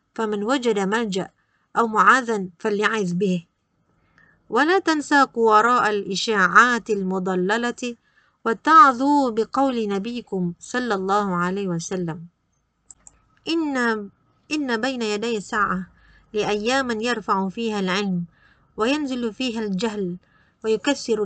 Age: 20-39